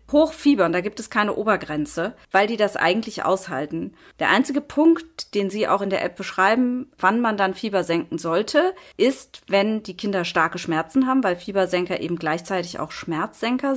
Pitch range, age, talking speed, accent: 175-230 Hz, 30-49, 175 wpm, German